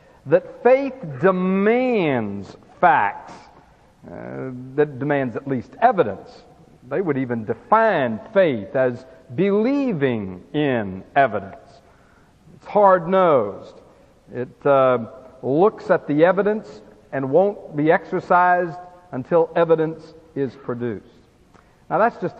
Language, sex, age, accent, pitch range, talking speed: English, male, 60-79, American, 140-205 Hz, 100 wpm